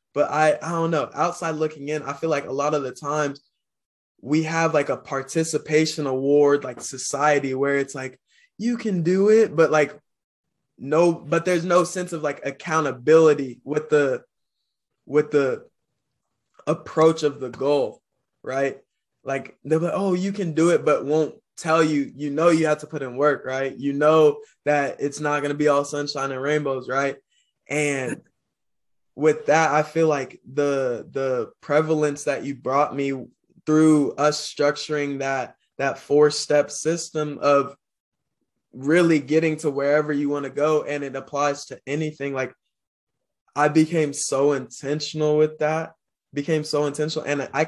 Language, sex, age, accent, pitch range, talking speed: English, male, 20-39, American, 140-160 Hz, 165 wpm